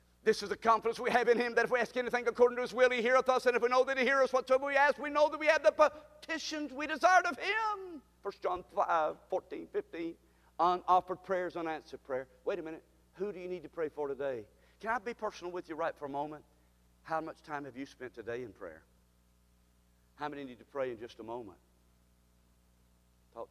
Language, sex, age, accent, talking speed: English, male, 50-69, American, 230 wpm